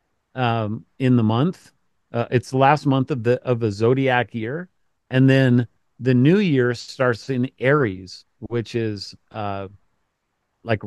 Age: 40-59